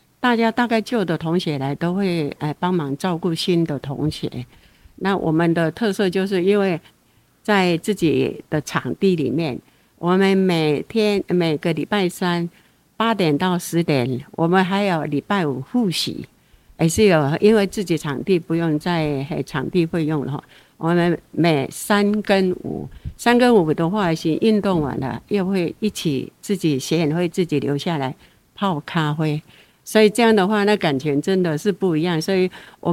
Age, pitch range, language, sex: 60-79, 150-195 Hz, Chinese, female